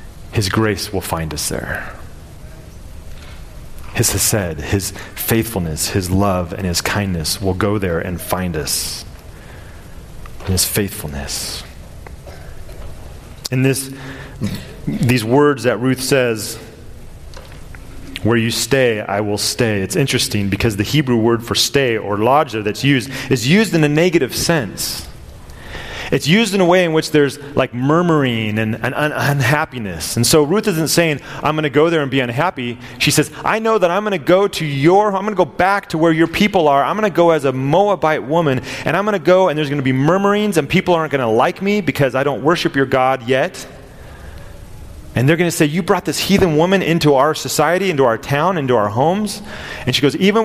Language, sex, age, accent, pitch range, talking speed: English, male, 30-49, American, 100-160 Hz, 190 wpm